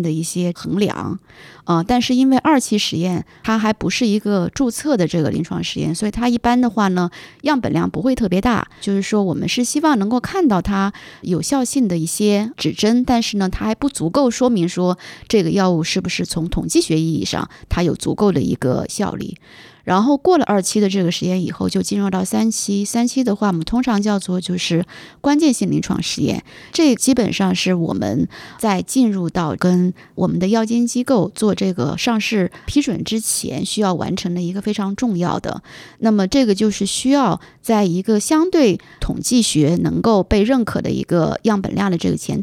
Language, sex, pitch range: Chinese, female, 185-245 Hz